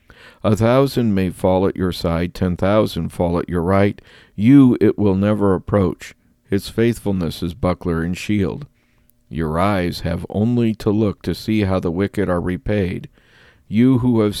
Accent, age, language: American, 50-69, English